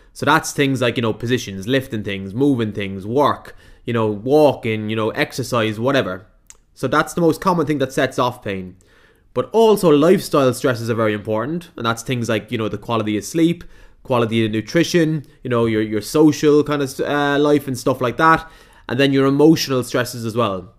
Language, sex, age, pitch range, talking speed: English, male, 20-39, 115-150 Hz, 200 wpm